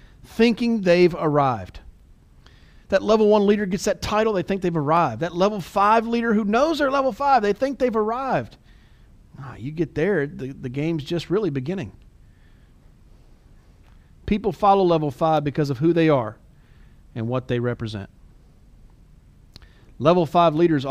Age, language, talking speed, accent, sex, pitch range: 40-59, English, 150 wpm, American, male, 120-165 Hz